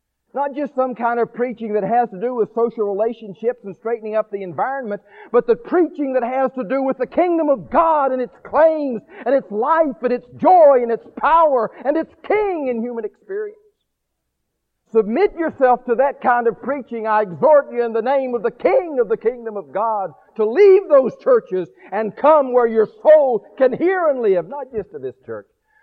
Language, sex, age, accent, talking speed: English, male, 50-69, American, 200 wpm